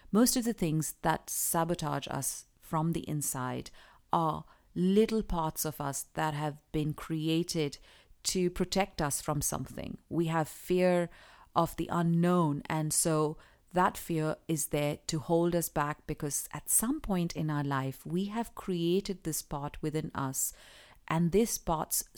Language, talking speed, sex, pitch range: English, 155 wpm, female, 155-190 Hz